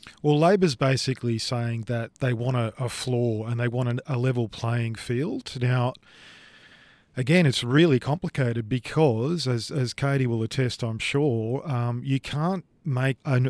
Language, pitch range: English, 115-135 Hz